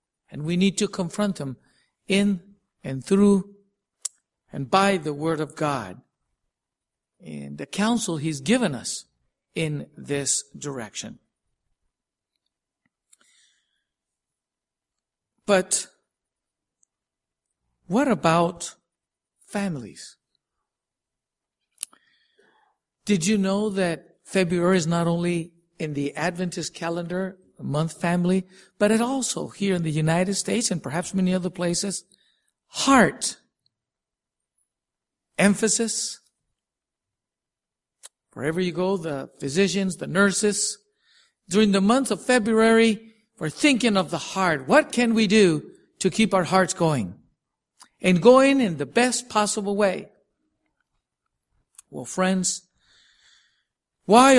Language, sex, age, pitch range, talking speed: English, male, 50-69, 170-215 Hz, 105 wpm